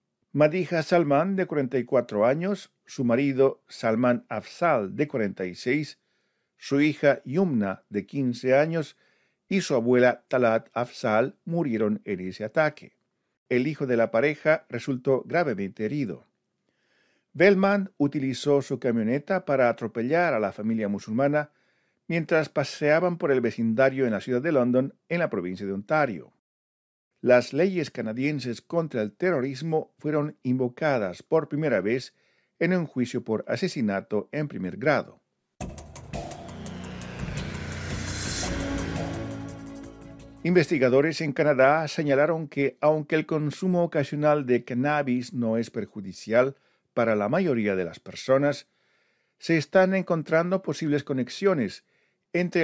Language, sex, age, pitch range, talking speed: Spanish, male, 50-69, 120-160 Hz, 120 wpm